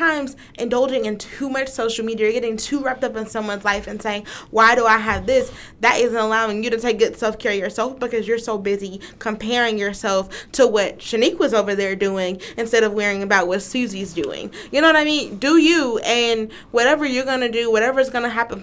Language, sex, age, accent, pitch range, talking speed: English, female, 20-39, American, 205-250 Hz, 215 wpm